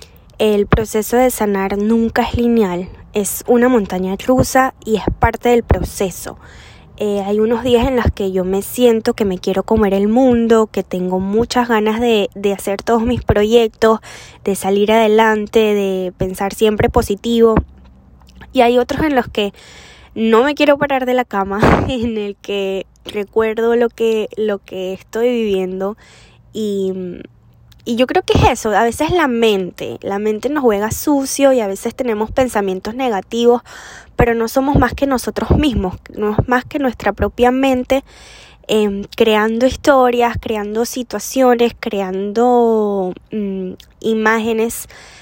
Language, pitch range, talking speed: Spanish, 200-245 Hz, 155 wpm